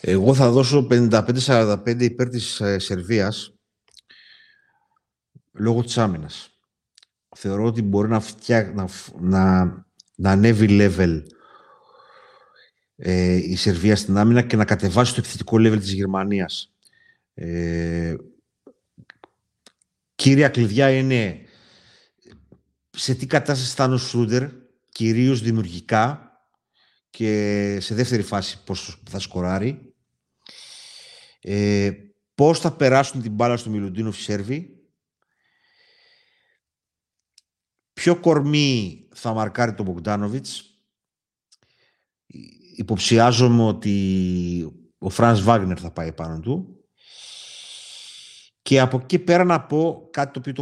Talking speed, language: 100 wpm, Greek